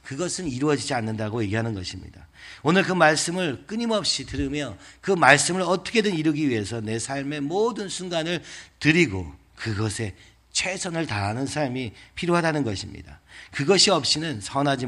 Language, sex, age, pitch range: Korean, male, 40-59, 105-160 Hz